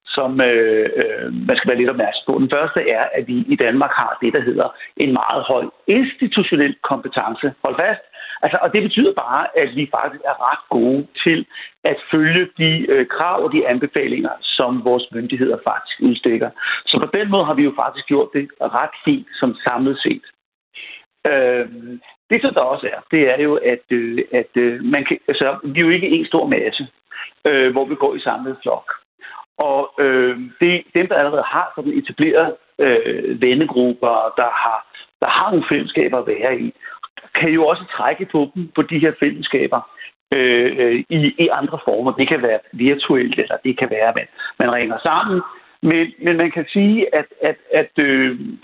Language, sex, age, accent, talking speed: Danish, male, 60-79, native, 190 wpm